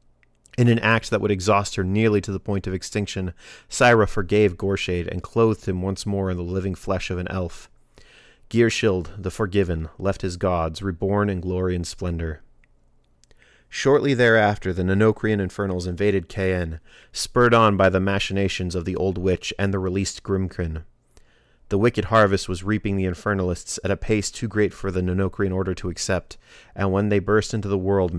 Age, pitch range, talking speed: 30-49, 90-105 Hz, 180 wpm